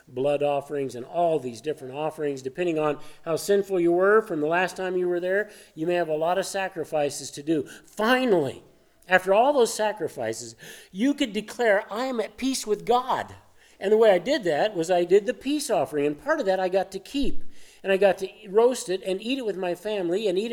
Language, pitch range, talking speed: English, 155-200 Hz, 225 wpm